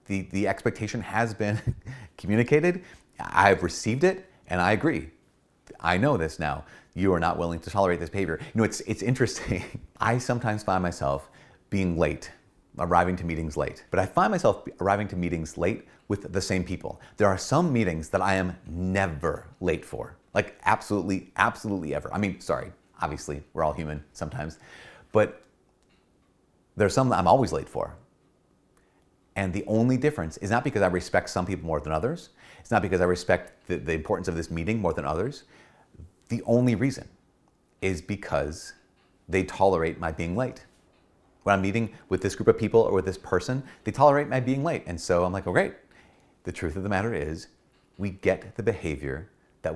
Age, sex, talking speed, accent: 30-49, male, 185 wpm, American